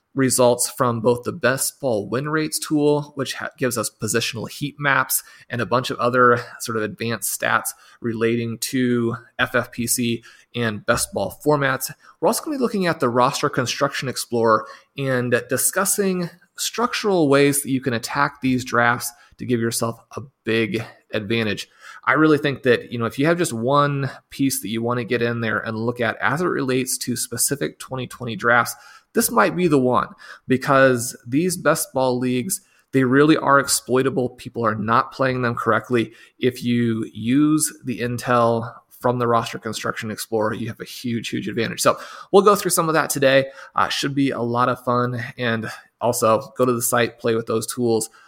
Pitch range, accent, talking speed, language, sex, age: 115-140 Hz, American, 185 wpm, English, male, 30-49